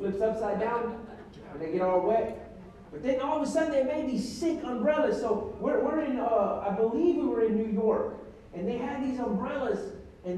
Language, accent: English, American